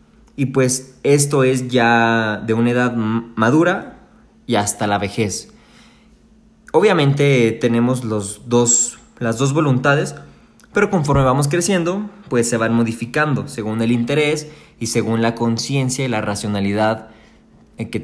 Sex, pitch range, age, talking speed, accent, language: male, 110-140 Hz, 20-39, 125 wpm, Mexican, Spanish